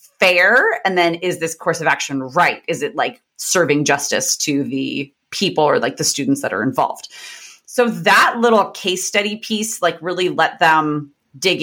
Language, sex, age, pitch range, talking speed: English, female, 30-49, 150-195 Hz, 180 wpm